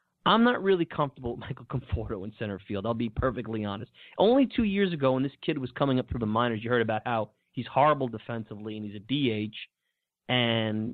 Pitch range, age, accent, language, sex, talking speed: 110-145 Hz, 30-49, American, English, male, 215 wpm